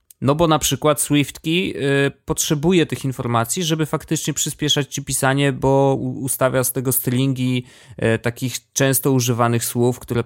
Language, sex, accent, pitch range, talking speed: Polish, male, native, 115-150 Hz, 135 wpm